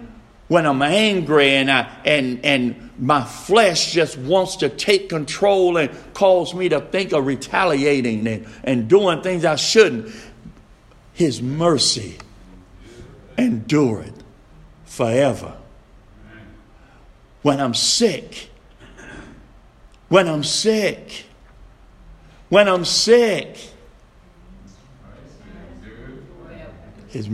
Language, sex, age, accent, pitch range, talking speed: English, male, 60-79, American, 120-205 Hz, 90 wpm